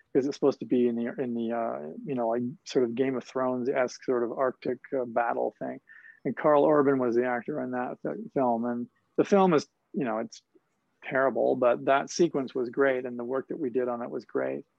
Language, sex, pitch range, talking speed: English, male, 120-140 Hz, 230 wpm